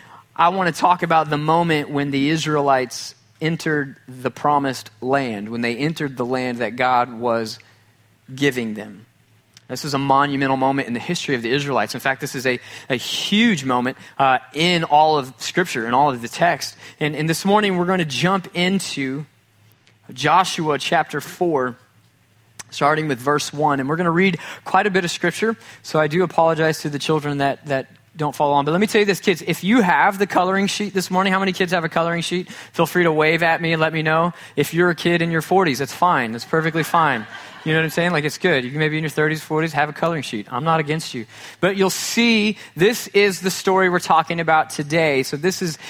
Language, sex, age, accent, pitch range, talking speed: English, male, 20-39, American, 135-175 Hz, 225 wpm